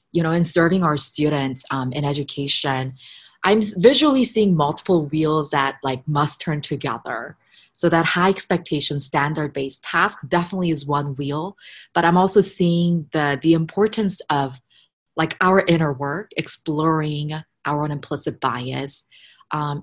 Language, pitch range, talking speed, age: English, 145-190 Hz, 140 wpm, 20-39